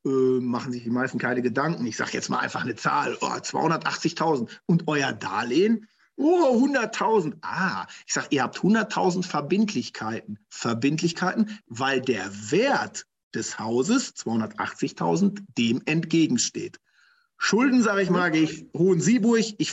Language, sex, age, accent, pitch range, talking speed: German, male, 50-69, German, 145-200 Hz, 135 wpm